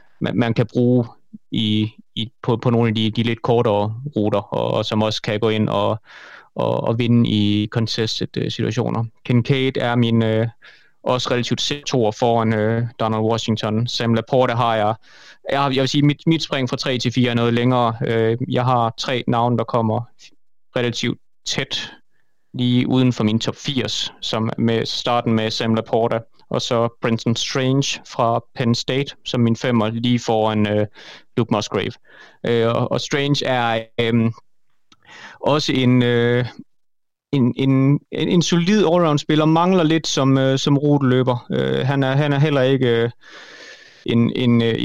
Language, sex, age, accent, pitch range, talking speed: Danish, male, 20-39, native, 115-130 Hz, 165 wpm